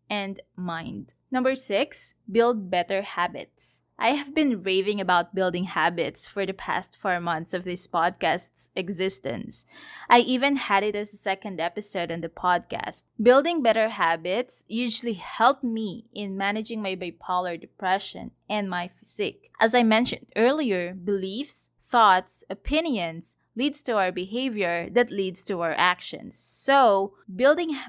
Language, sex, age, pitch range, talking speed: English, female, 20-39, 185-230 Hz, 140 wpm